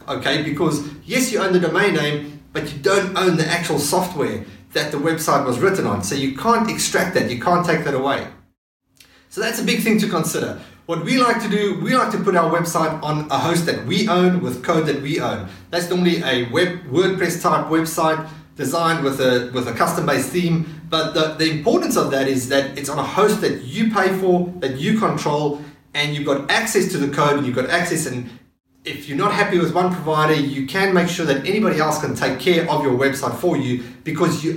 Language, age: English, 30-49